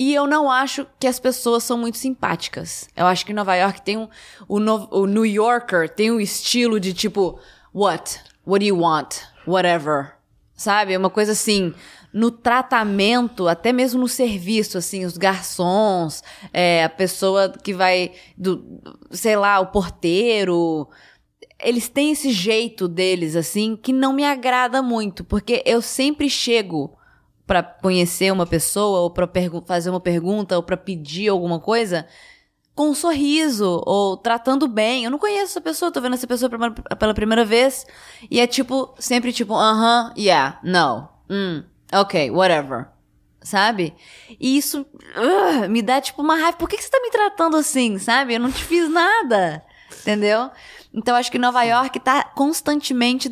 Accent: Brazilian